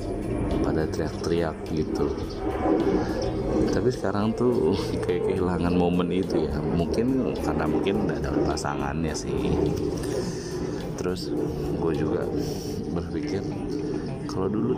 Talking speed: 95 wpm